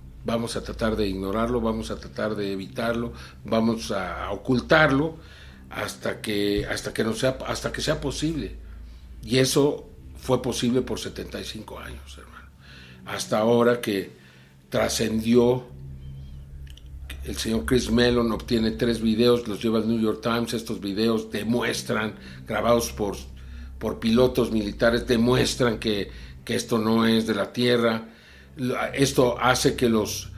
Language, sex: Spanish, male